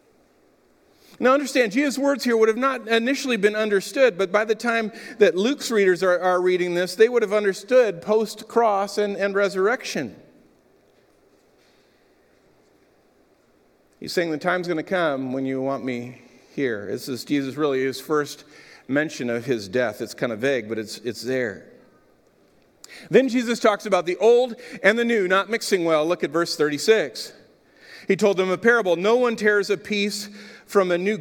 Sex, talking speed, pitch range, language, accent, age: male, 170 wpm, 185-235 Hz, English, American, 50-69